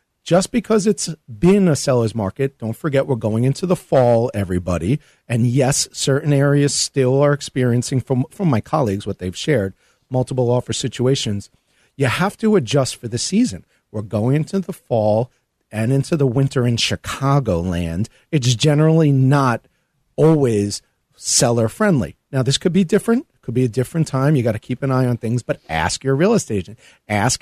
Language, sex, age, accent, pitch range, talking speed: English, male, 40-59, American, 115-150 Hz, 175 wpm